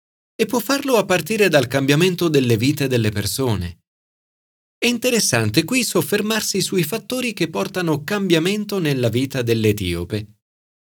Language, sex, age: Italian, male, 40-59